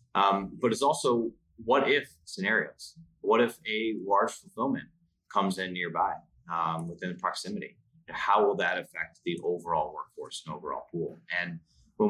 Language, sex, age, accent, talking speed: English, male, 30-49, American, 150 wpm